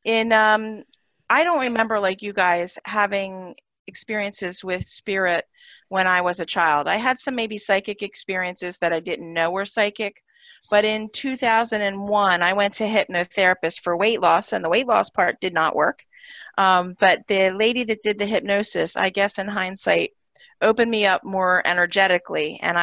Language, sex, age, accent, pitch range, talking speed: English, female, 40-59, American, 160-205 Hz, 170 wpm